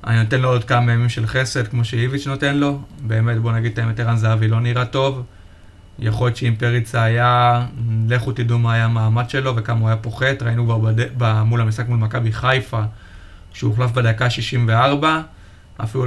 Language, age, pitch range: Hebrew, 20-39, 110-130 Hz